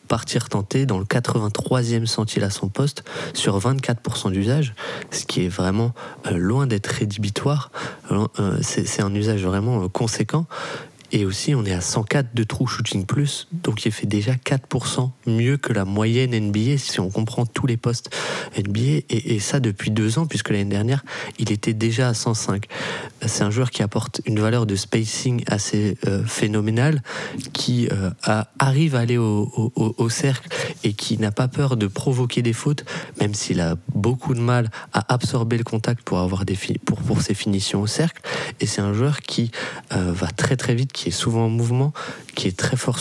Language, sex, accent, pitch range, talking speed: French, male, French, 105-130 Hz, 185 wpm